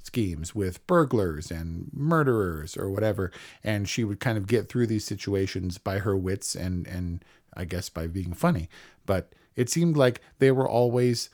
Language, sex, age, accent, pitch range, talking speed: English, male, 40-59, American, 95-120 Hz, 175 wpm